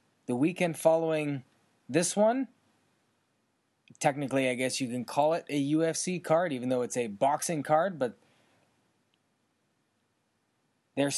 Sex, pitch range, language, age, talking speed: male, 140-195 Hz, English, 20-39, 125 wpm